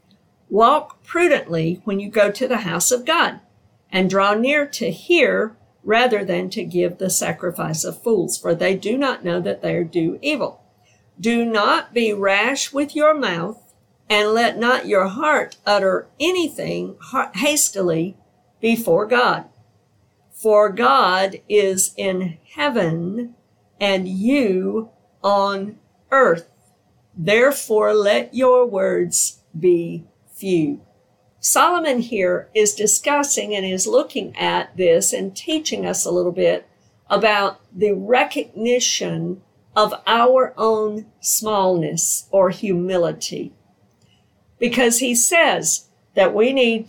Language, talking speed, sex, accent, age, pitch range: English, 120 wpm, female, American, 50-69, 180-245 Hz